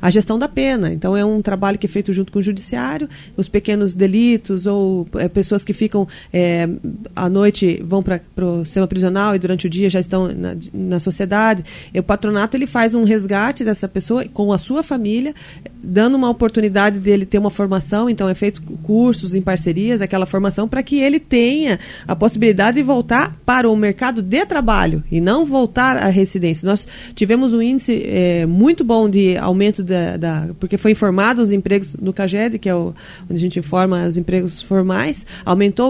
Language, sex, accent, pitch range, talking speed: Portuguese, female, Brazilian, 190-240 Hz, 195 wpm